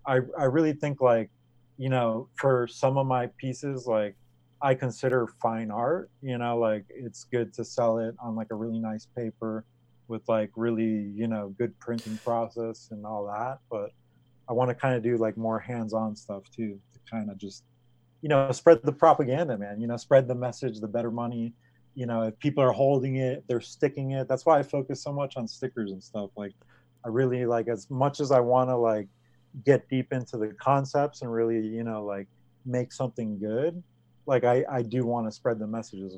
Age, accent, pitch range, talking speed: 30-49, American, 110-130 Hz, 210 wpm